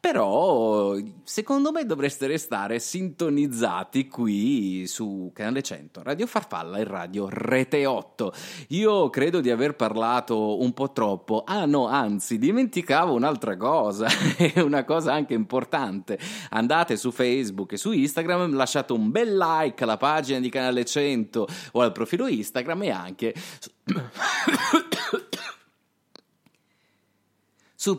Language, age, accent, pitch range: Italian, 30-49, native, 115-190 Hz